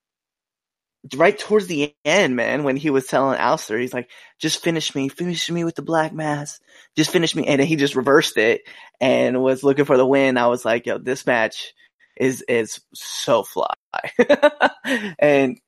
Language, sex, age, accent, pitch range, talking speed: English, male, 20-39, American, 130-175 Hz, 180 wpm